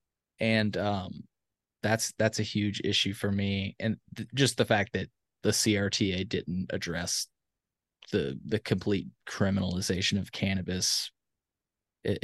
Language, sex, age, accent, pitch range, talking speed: English, male, 20-39, American, 100-120 Hz, 140 wpm